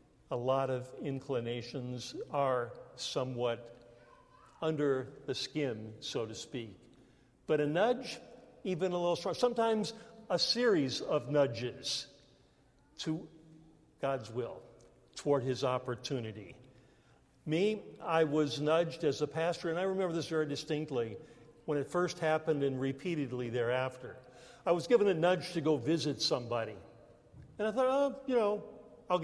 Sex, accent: male, American